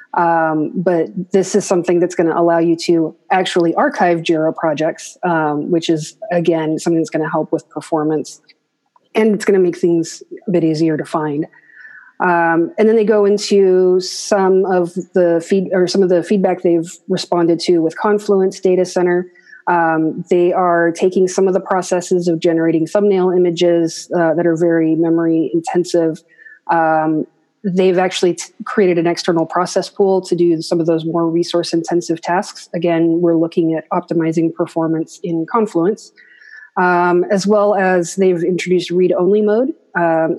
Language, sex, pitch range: English, female, 165-185 Hz